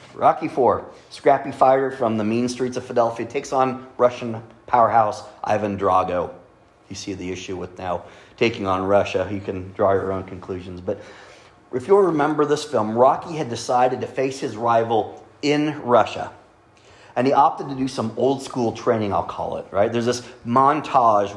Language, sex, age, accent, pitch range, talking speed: English, male, 30-49, American, 105-130 Hz, 175 wpm